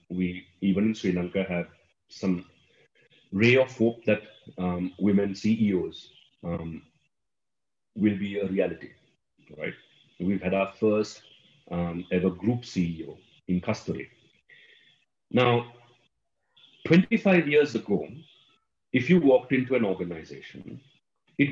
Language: English